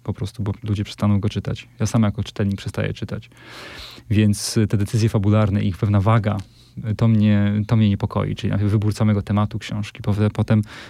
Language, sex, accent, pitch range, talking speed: Polish, male, native, 105-120 Hz, 175 wpm